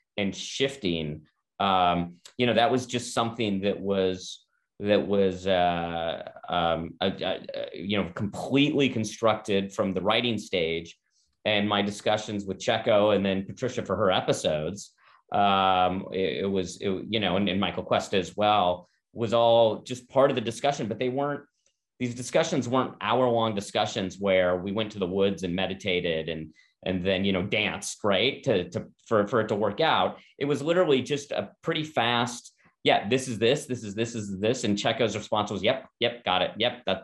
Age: 30-49